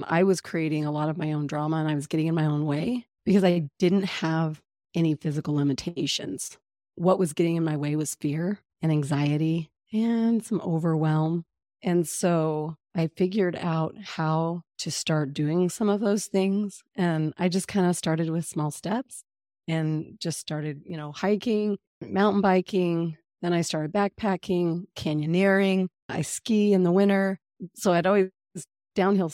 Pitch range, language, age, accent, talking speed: 155-190 Hz, English, 30-49, American, 165 wpm